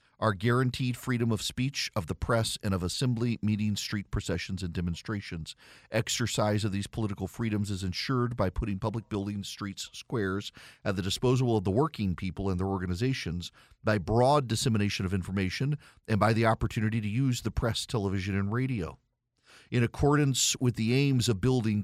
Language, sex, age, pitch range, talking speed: English, male, 40-59, 105-130 Hz, 170 wpm